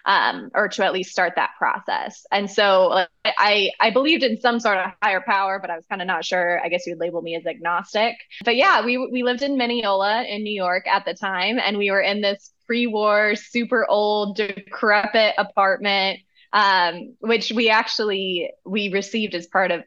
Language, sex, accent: English, female, American